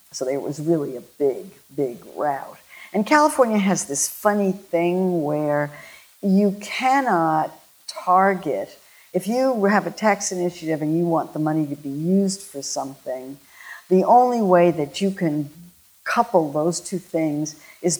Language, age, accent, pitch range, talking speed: English, 50-69, American, 150-200 Hz, 150 wpm